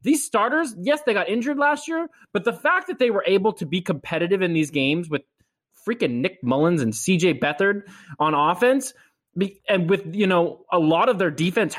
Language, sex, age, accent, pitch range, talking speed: English, male, 20-39, American, 160-230 Hz, 200 wpm